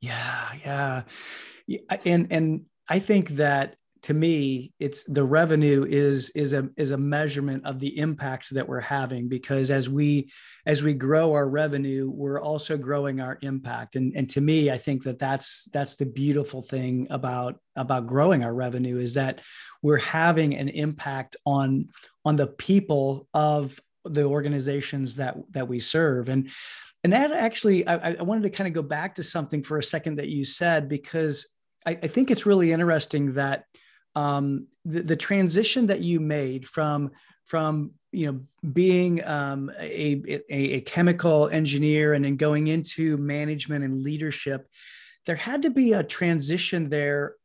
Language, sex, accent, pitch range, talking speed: English, male, American, 140-160 Hz, 165 wpm